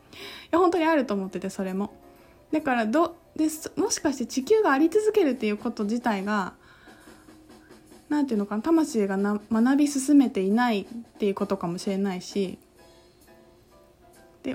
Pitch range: 210-290 Hz